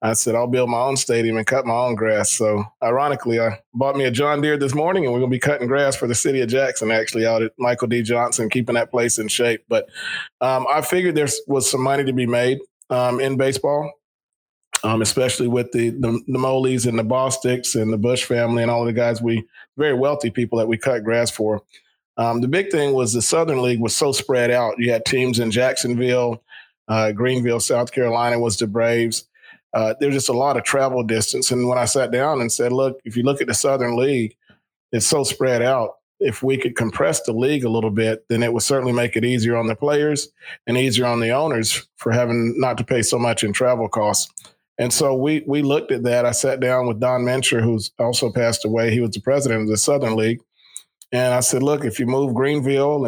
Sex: male